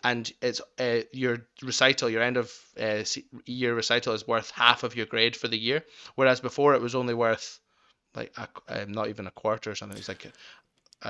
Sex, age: male, 20-39